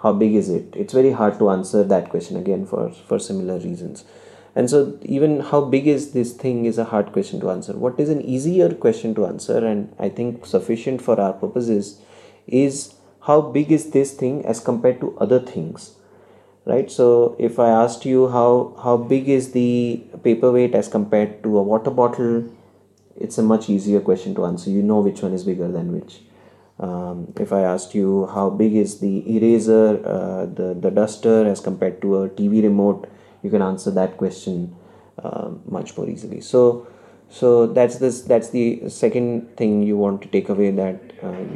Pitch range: 100-125 Hz